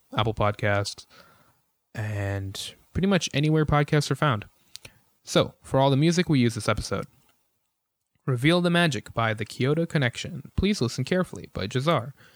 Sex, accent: male, American